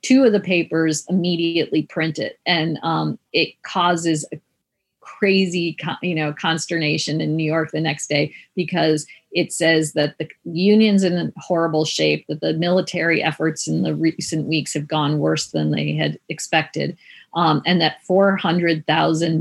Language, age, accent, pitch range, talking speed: English, 40-59, American, 155-175 Hz, 145 wpm